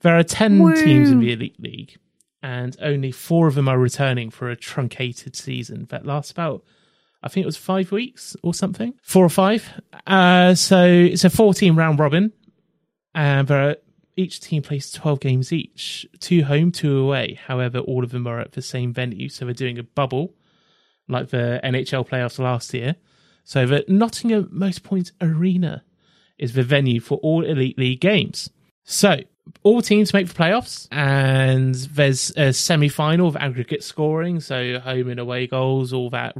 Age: 30-49